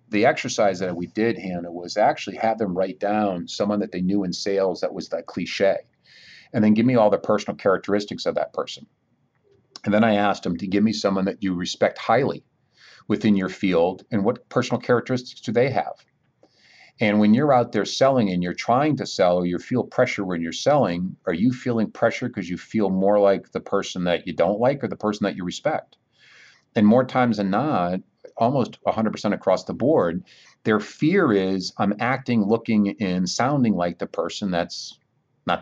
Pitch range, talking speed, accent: 95-110 Hz, 200 wpm, American